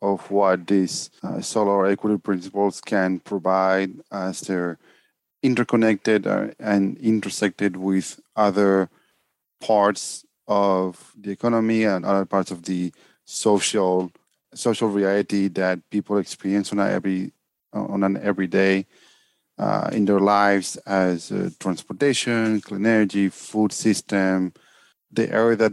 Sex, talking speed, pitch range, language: male, 115 wpm, 95-105 Hz, English